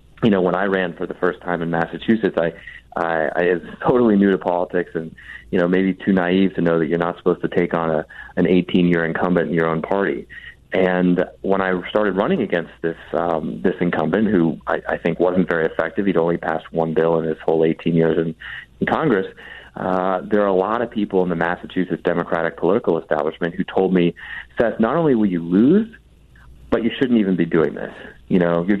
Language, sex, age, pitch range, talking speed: English, male, 30-49, 85-100 Hz, 215 wpm